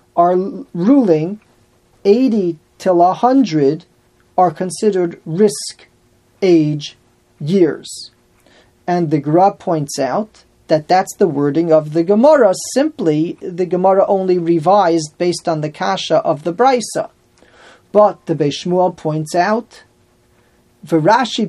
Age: 40-59